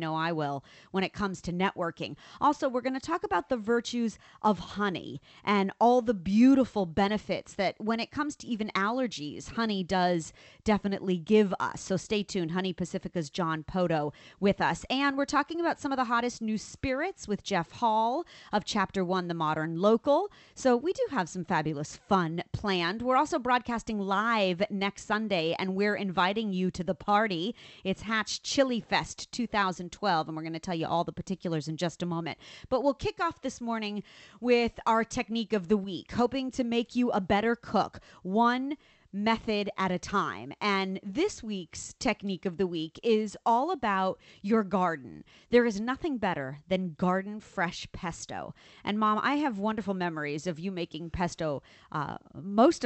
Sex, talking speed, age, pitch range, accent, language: female, 180 wpm, 30-49, 180-230 Hz, American, English